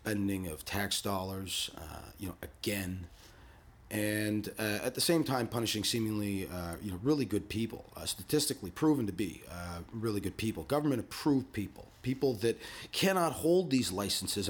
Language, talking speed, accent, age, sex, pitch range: English, 165 wpm, American, 30-49, male, 90-110 Hz